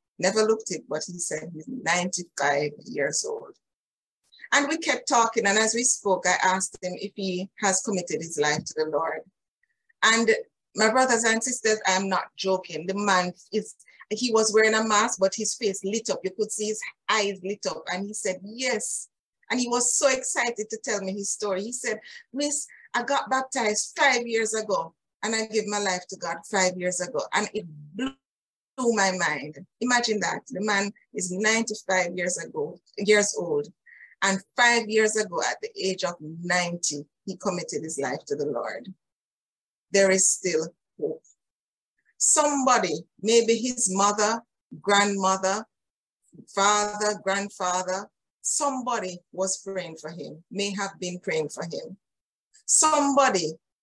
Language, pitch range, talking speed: English, 190-245 Hz, 165 wpm